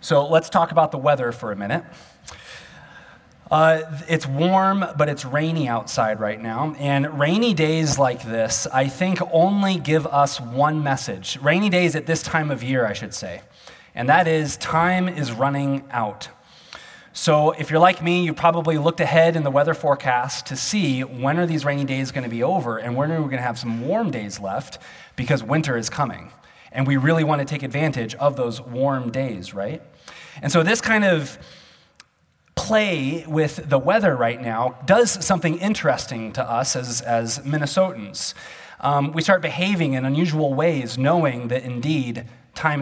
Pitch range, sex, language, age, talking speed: 130-165 Hz, male, English, 20-39, 180 wpm